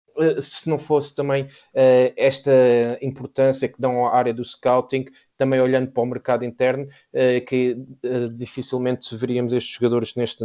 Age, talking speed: 20-39, 140 wpm